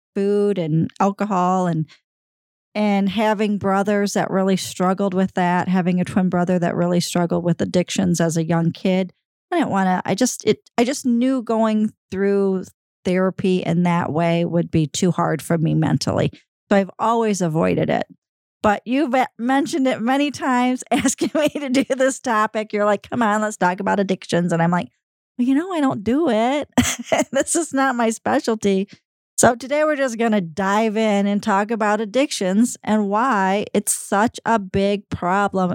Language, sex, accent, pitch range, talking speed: English, female, American, 185-225 Hz, 180 wpm